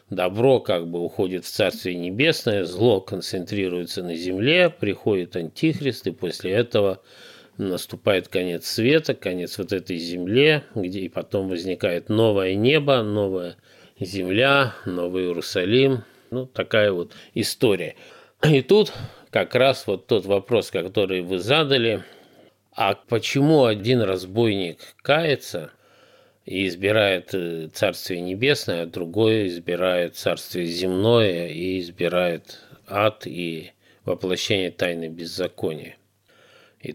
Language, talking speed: Russian, 110 wpm